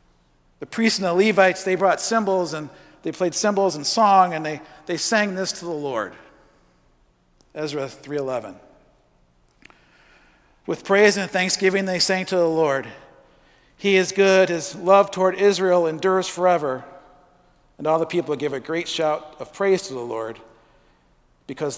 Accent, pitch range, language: American, 115-180 Hz, English